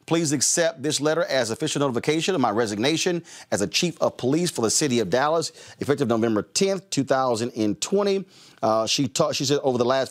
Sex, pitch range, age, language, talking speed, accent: male, 115-150 Hz, 40-59, English, 185 wpm, American